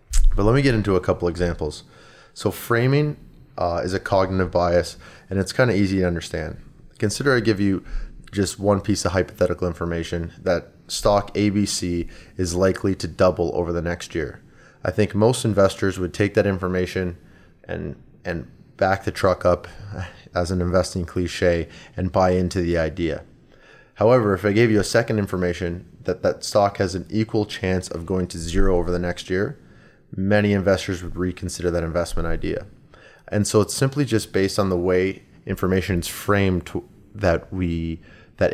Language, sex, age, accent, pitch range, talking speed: English, male, 20-39, American, 90-100 Hz, 175 wpm